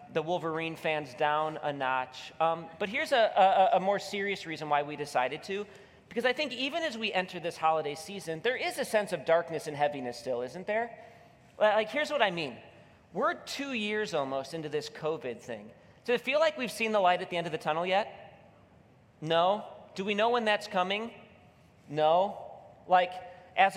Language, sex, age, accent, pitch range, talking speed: English, male, 30-49, American, 155-195 Hz, 195 wpm